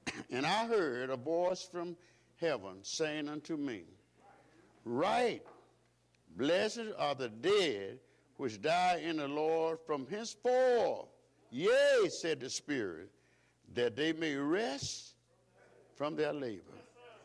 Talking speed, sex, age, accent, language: 115 wpm, male, 60-79, American, English